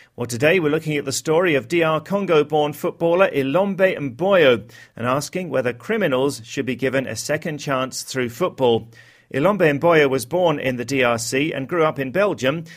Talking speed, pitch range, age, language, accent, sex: 180 wpm, 125-155 Hz, 40-59, English, British, male